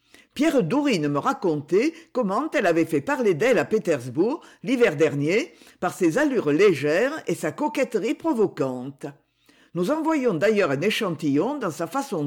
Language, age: French, 50-69